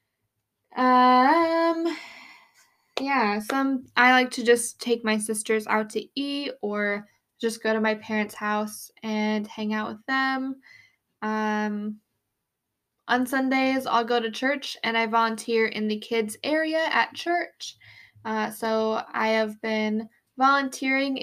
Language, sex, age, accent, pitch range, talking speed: English, female, 10-29, American, 220-255 Hz, 135 wpm